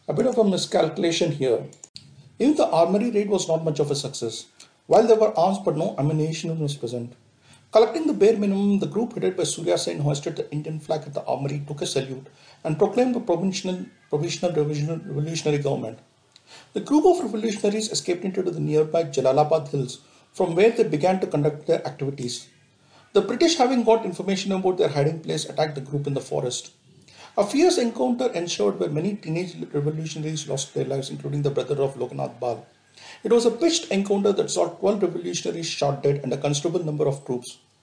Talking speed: 185 wpm